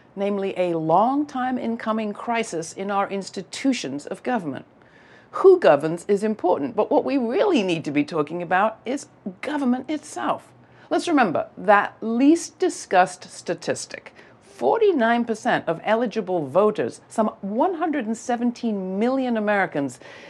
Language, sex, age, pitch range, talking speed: English, female, 60-79, 190-265 Hz, 120 wpm